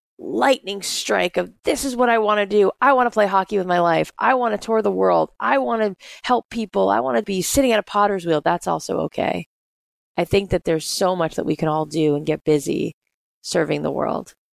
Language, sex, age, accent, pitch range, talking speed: English, female, 20-39, American, 150-185 Hz, 240 wpm